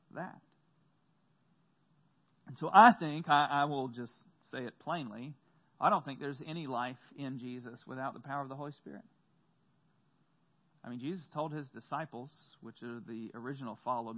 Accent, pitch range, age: American, 140-180 Hz, 40-59